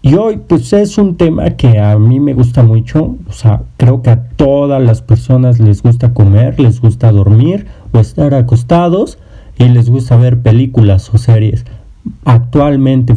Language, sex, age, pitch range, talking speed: English, male, 40-59, 110-130 Hz, 170 wpm